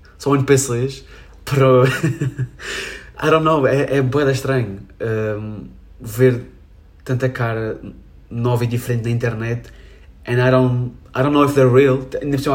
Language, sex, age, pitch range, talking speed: Portuguese, male, 20-39, 90-120 Hz, 150 wpm